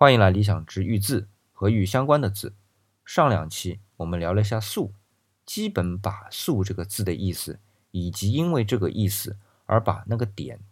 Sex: male